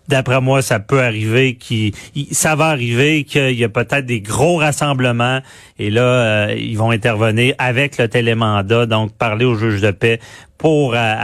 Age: 40-59